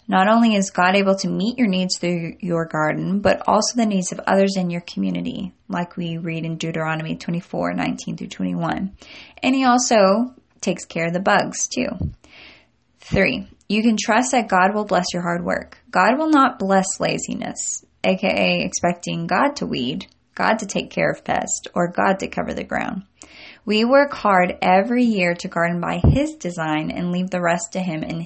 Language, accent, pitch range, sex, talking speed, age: English, American, 175-210 Hz, female, 185 wpm, 10-29